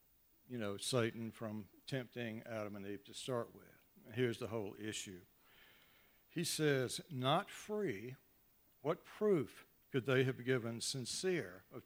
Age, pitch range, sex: 60-79, 110-150 Hz, male